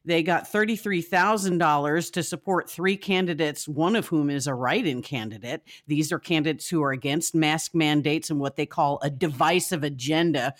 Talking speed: 165 wpm